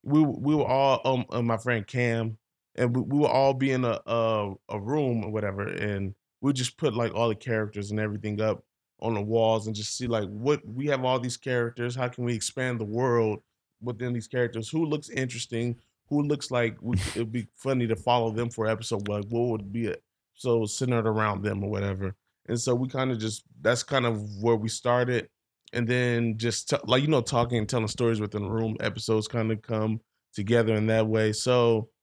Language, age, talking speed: English, 20-39, 225 wpm